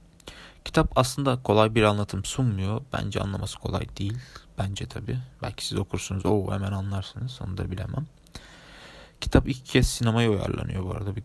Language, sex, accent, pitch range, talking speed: Turkish, male, native, 100-115 Hz, 155 wpm